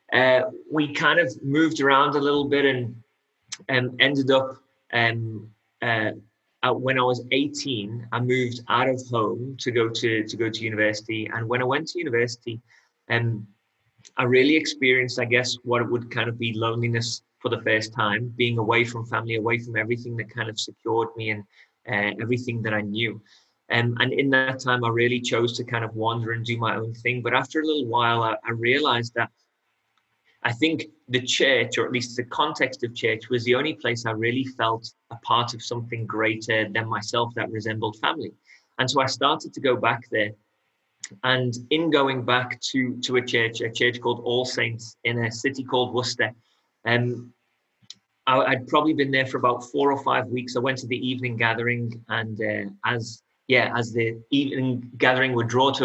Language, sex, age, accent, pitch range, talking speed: English, male, 30-49, British, 115-130 Hz, 195 wpm